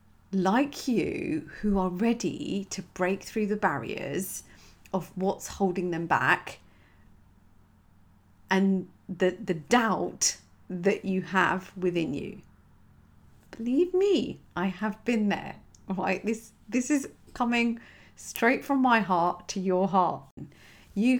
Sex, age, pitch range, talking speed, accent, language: female, 40-59, 160-220 Hz, 120 wpm, British, English